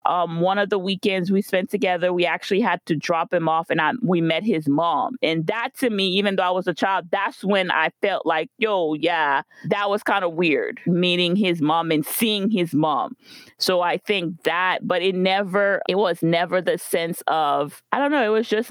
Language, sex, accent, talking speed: English, female, American, 220 wpm